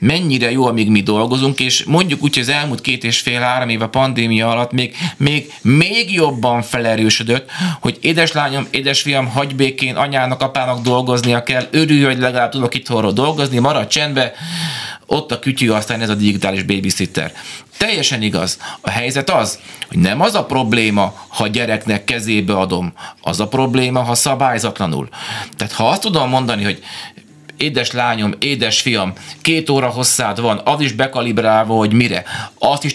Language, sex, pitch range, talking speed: Hungarian, male, 110-135 Hz, 160 wpm